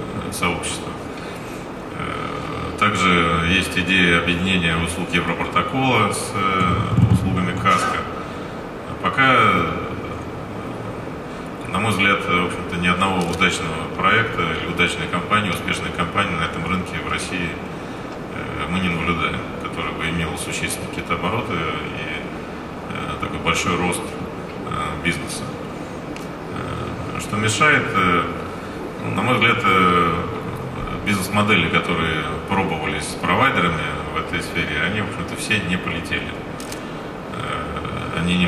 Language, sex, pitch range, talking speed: Russian, male, 80-90 Hz, 100 wpm